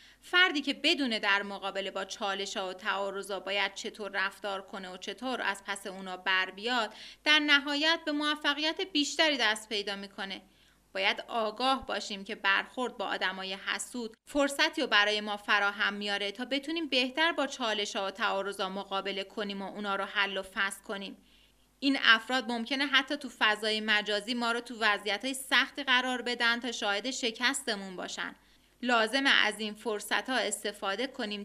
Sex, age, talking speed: female, 30-49, 155 wpm